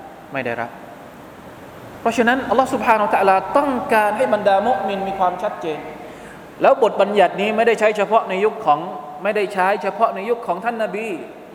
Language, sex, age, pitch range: Thai, male, 20-39, 175-220 Hz